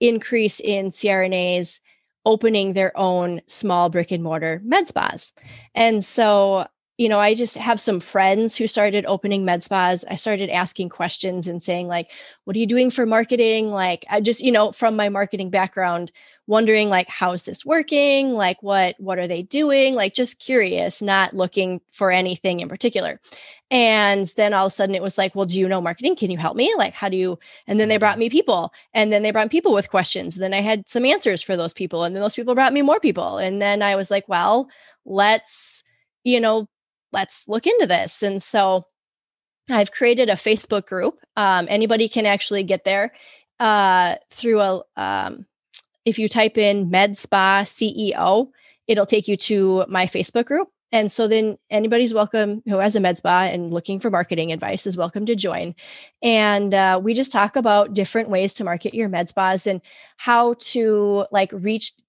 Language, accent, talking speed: English, American, 195 wpm